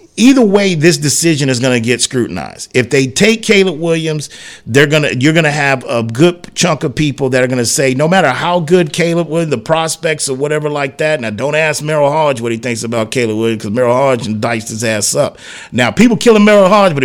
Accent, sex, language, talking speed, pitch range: American, male, English, 240 wpm, 140-180 Hz